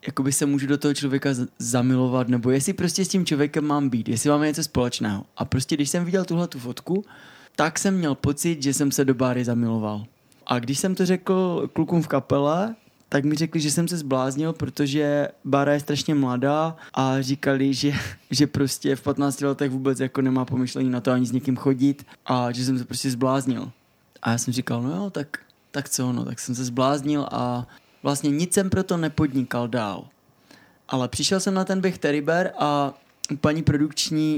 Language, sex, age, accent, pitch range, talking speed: Czech, male, 20-39, native, 130-155 Hz, 195 wpm